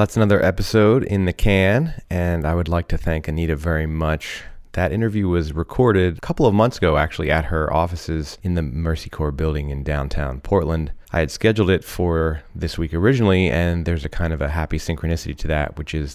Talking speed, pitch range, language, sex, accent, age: 210 wpm, 75-90 Hz, English, male, American, 30-49